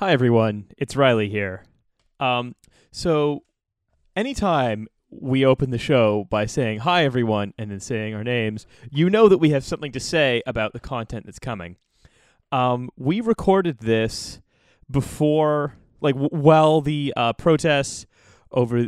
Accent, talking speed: American, 145 wpm